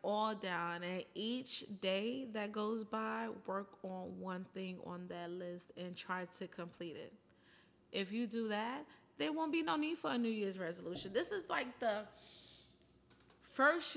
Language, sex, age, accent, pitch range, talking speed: English, female, 20-39, American, 180-210 Hz, 170 wpm